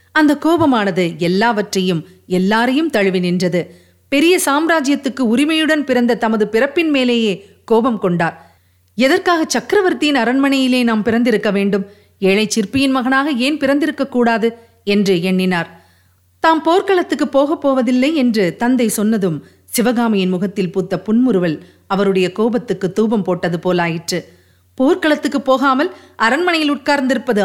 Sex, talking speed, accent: female, 105 wpm, native